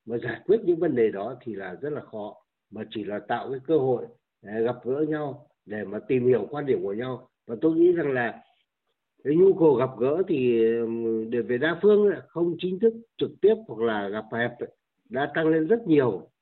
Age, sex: 60-79, male